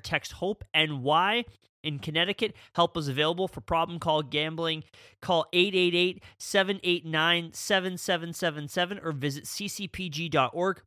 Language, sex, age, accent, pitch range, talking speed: English, male, 30-49, American, 140-180 Hz, 100 wpm